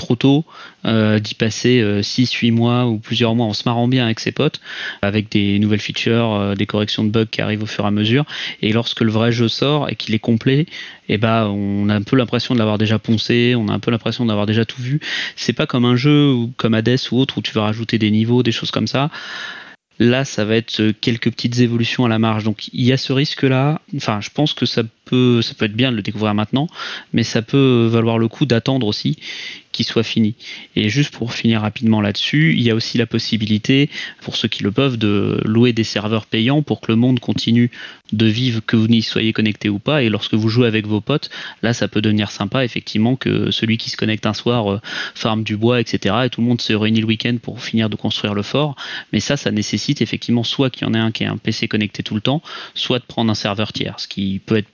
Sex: male